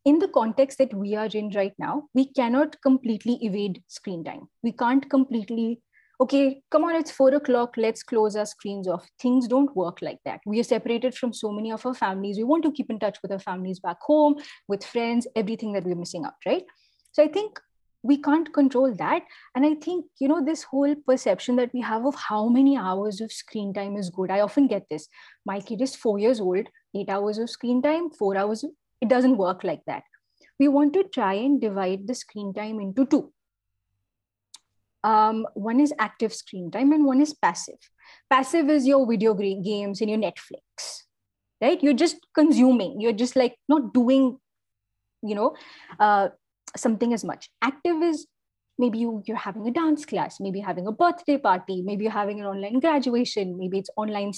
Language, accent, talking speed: Hindi, native, 200 wpm